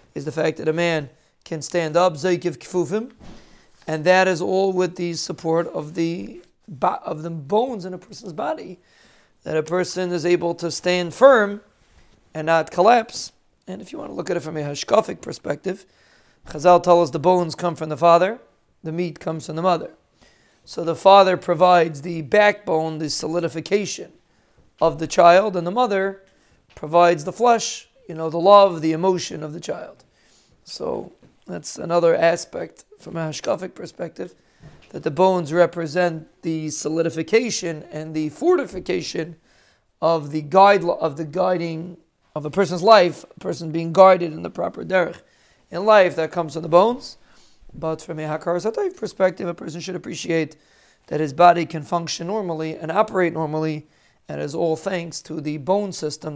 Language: English